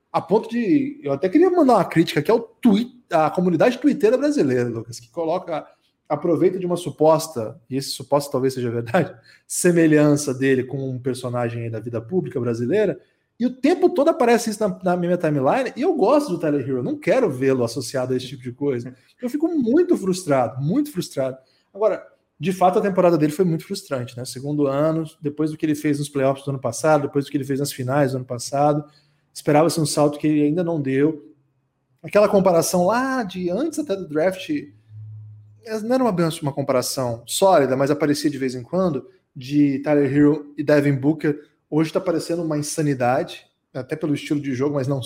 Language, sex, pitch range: Portuguese, male, 135-180 Hz